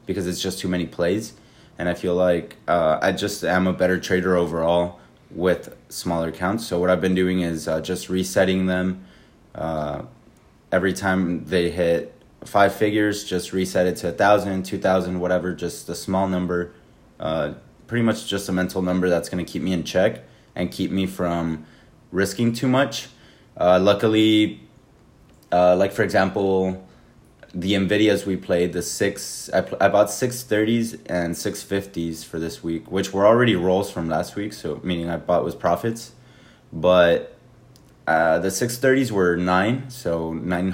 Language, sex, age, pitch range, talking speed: English, male, 20-39, 85-100 Hz, 170 wpm